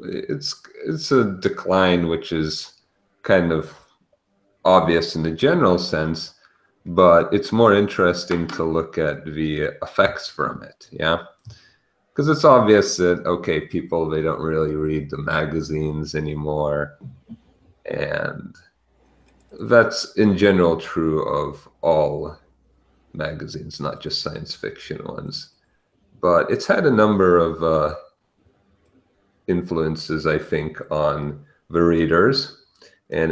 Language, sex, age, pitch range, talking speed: English, male, 40-59, 75-90 Hz, 115 wpm